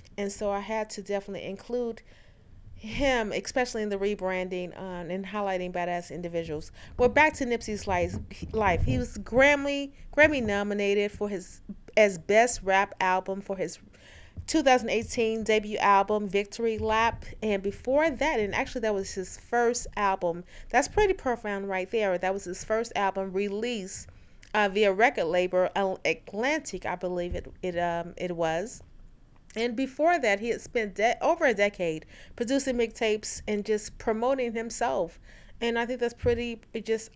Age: 30-49